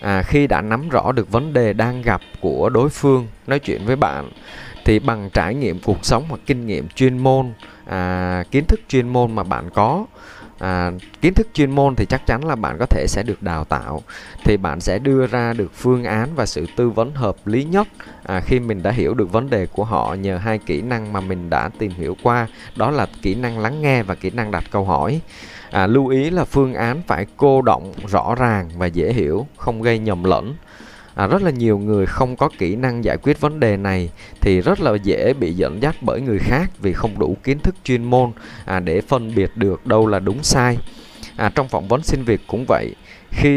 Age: 20-39